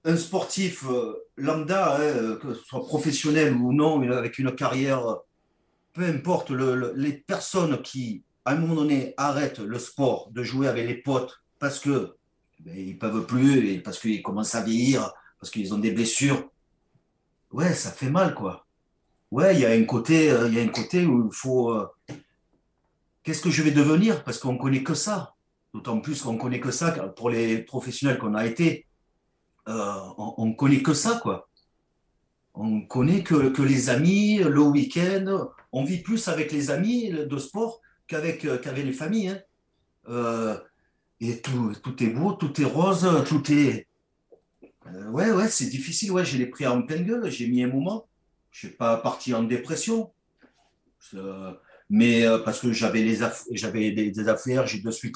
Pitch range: 115-160 Hz